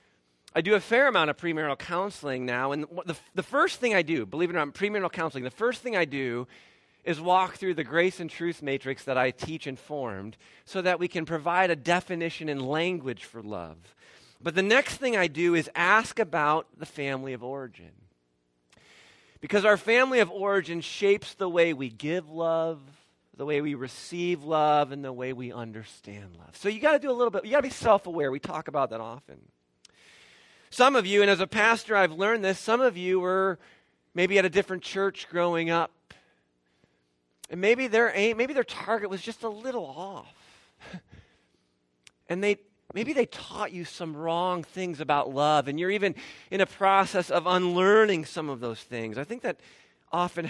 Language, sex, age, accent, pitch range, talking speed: English, male, 40-59, American, 135-195 Hz, 195 wpm